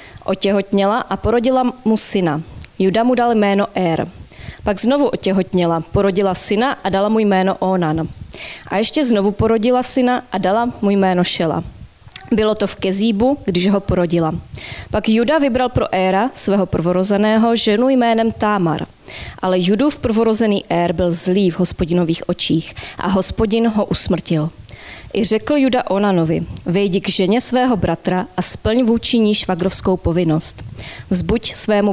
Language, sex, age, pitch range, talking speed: Czech, female, 20-39, 180-225 Hz, 145 wpm